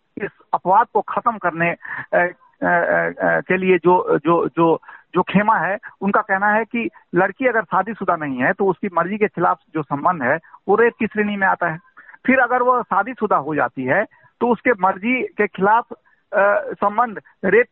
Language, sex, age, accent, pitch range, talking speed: Hindi, male, 50-69, native, 195-230 Hz, 185 wpm